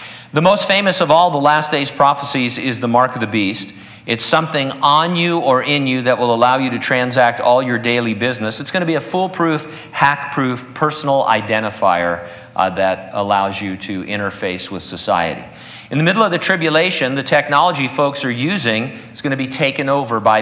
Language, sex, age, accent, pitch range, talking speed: English, male, 50-69, American, 115-150 Hz, 200 wpm